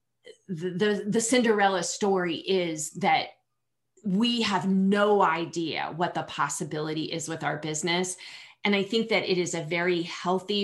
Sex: female